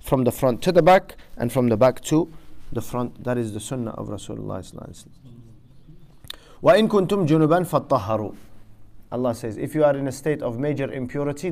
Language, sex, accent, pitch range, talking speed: English, male, Lebanese, 120-155 Hz, 160 wpm